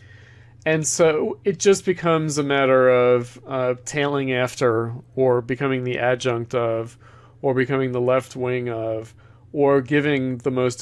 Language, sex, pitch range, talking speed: English, male, 115-140 Hz, 145 wpm